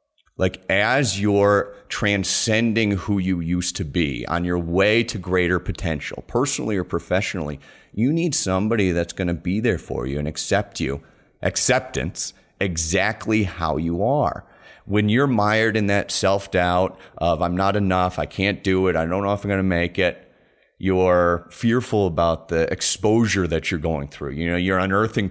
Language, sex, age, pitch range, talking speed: English, male, 30-49, 85-105 Hz, 170 wpm